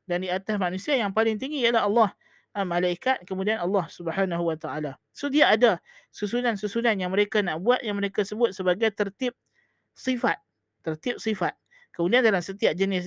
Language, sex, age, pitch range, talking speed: Malay, male, 20-39, 180-220 Hz, 155 wpm